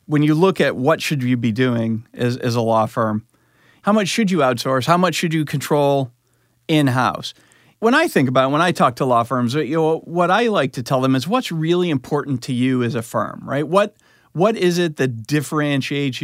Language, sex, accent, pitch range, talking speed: English, male, American, 130-175 Hz, 220 wpm